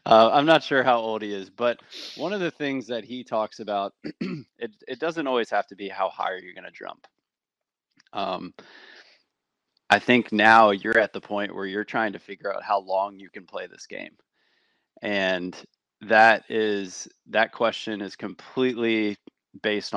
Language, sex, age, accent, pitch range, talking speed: English, male, 20-39, American, 95-115 Hz, 175 wpm